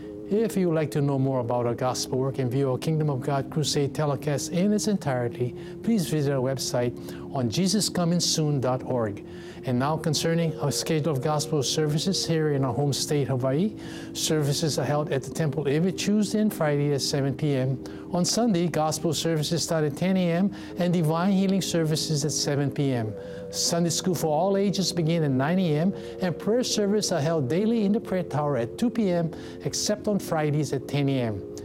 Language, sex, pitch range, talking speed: English, male, 140-175 Hz, 185 wpm